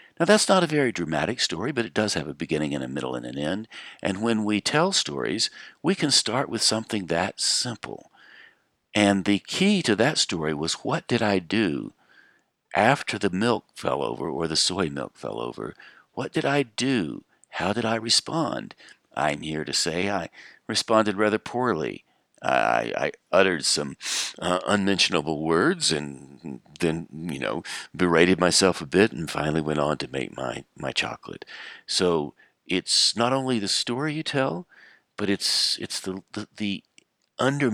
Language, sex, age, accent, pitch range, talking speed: English, male, 60-79, American, 80-120 Hz, 170 wpm